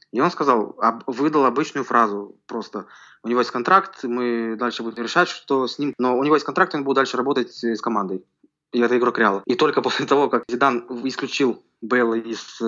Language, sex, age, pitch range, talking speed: Russian, male, 20-39, 120-140 Hz, 205 wpm